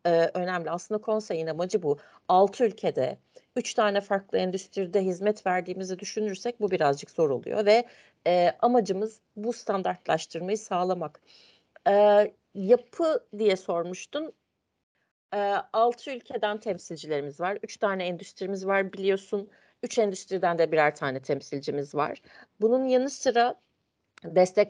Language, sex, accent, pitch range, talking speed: Turkish, female, native, 165-215 Hz, 120 wpm